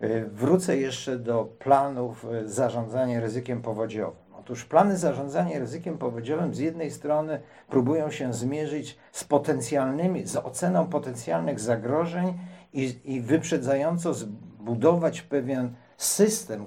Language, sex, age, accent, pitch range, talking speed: Polish, male, 50-69, native, 125-170 Hz, 110 wpm